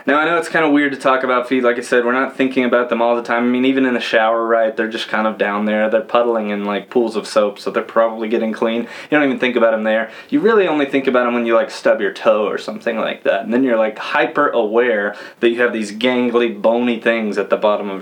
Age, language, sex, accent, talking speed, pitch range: 20-39, English, male, American, 290 wpm, 115-130 Hz